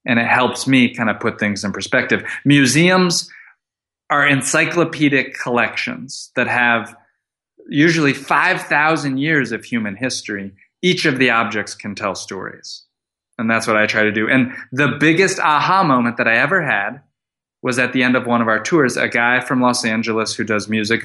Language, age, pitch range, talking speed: English, 20-39, 115-150 Hz, 175 wpm